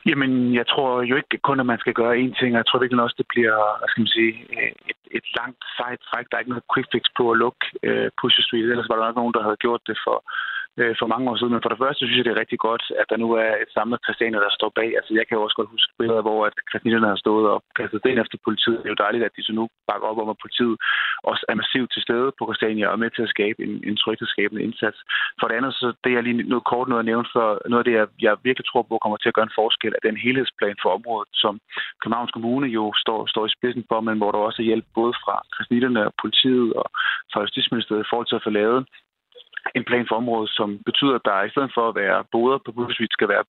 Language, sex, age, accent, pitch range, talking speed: Danish, male, 30-49, native, 110-125 Hz, 275 wpm